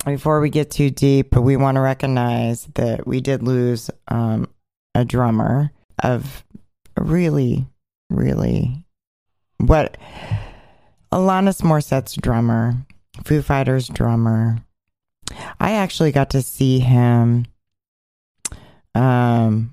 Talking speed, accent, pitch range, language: 105 wpm, American, 115-135 Hz, English